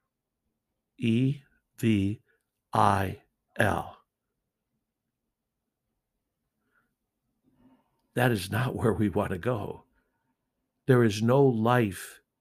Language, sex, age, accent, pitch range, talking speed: English, male, 60-79, American, 110-135 Hz, 65 wpm